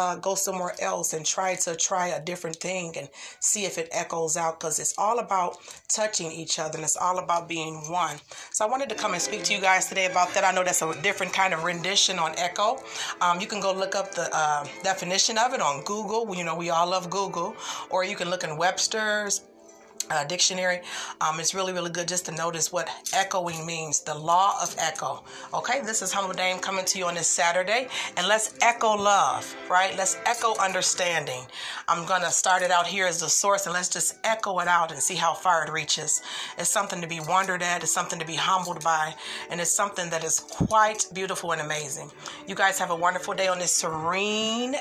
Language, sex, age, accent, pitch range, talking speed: English, female, 30-49, American, 165-190 Hz, 220 wpm